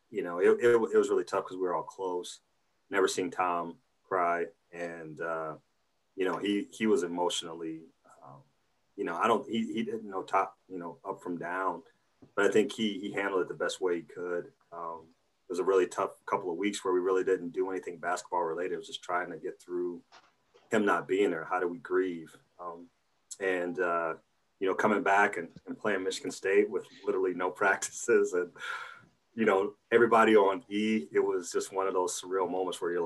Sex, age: male, 30-49